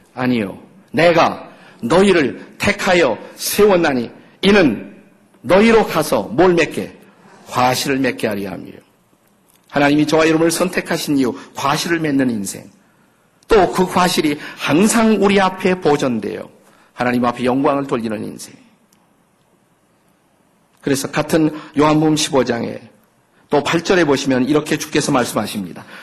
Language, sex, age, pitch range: Korean, male, 50-69, 140-185 Hz